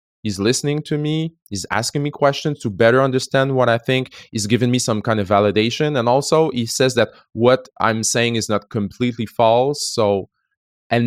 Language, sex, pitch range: English, male, 105-135 Hz